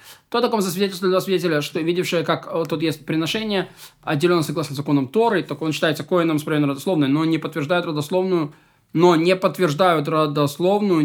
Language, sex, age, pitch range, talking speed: Russian, male, 20-39, 150-185 Hz, 165 wpm